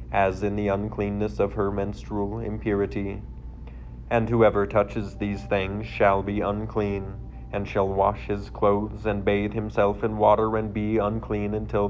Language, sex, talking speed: English, male, 150 wpm